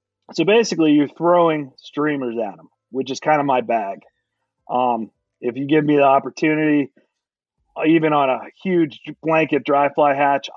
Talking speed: 160 wpm